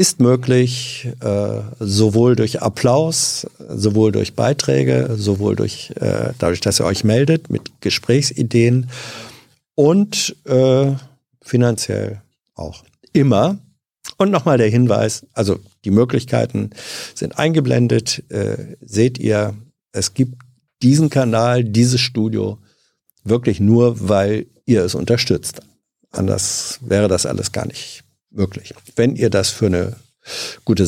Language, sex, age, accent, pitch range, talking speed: German, male, 50-69, German, 100-130 Hz, 120 wpm